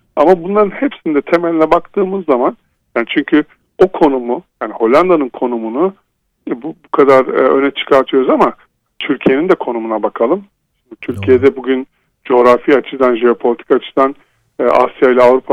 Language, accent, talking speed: Turkish, native, 120 wpm